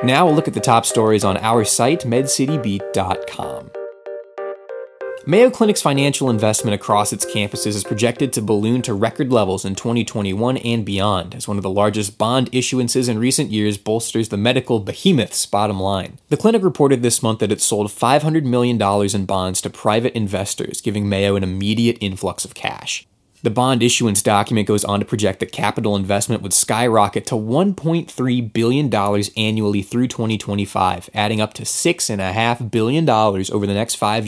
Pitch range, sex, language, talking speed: 100-125 Hz, male, English, 165 wpm